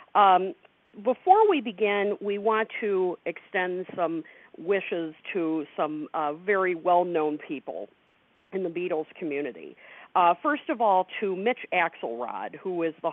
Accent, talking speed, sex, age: American, 135 wpm, female, 50-69